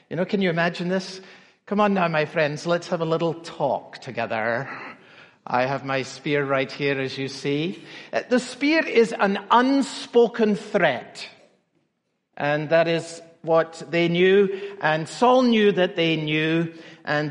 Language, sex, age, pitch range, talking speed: English, male, 60-79, 145-180 Hz, 155 wpm